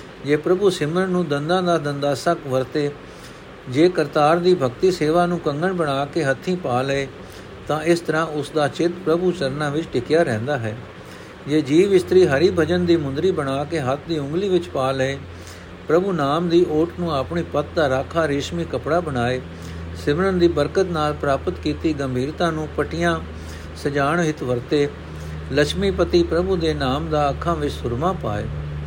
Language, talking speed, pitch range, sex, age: Punjabi, 155 wpm, 130-170 Hz, male, 60-79